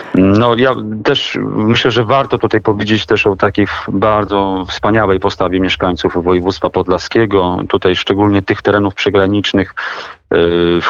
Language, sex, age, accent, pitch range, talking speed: Polish, male, 40-59, native, 95-105 Hz, 125 wpm